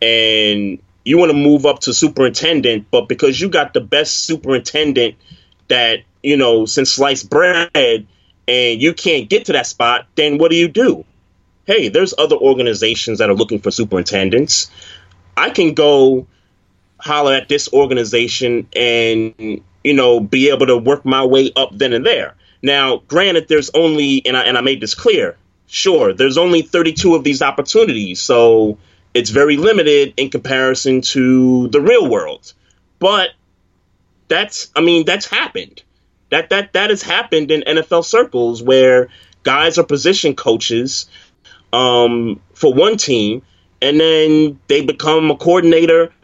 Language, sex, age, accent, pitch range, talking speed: English, male, 30-49, American, 120-165 Hz, 155 wpm